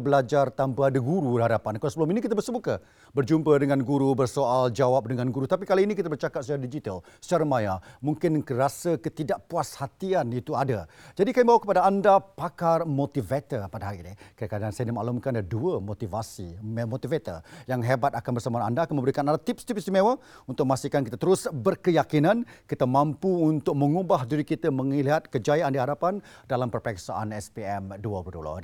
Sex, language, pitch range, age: male, Malay, 115-165 Hz, 40-59